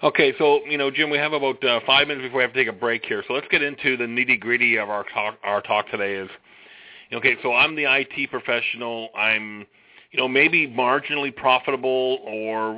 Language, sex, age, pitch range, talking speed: English, male, 40-59, 110-135 Hz, 215 wpm